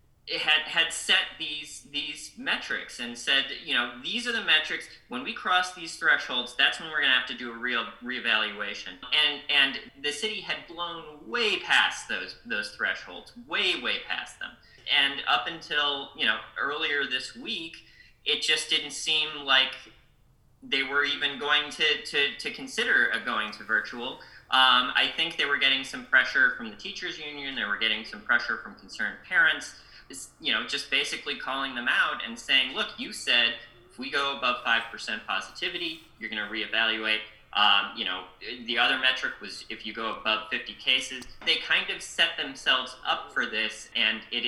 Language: English